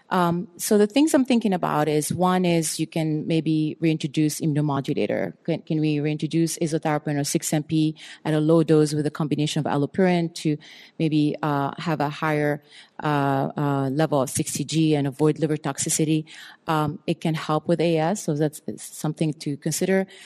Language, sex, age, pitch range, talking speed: English, female, 30-49, 150-175 Hz, 170 wpm